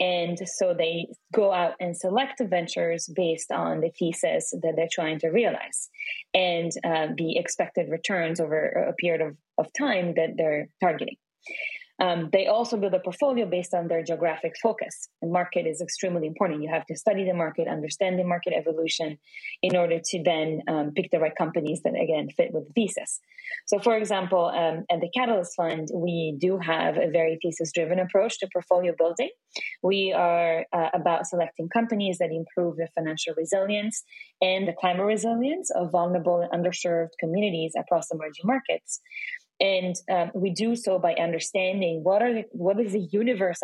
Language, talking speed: English, 175 wpm